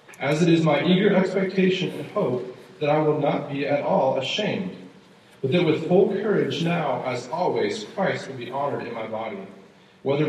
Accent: American